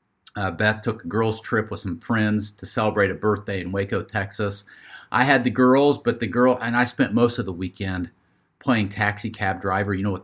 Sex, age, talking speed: male, 40-59, 215 wpm